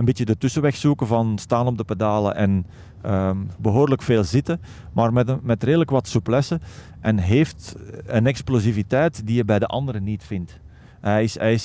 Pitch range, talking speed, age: 105-125 Hz, 175 wpm, 40-59